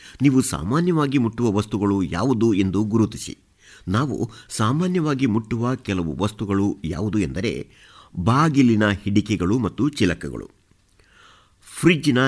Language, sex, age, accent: Kannada, male, 60-79, native